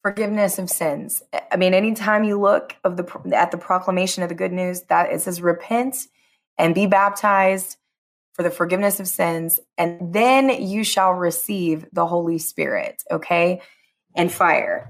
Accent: American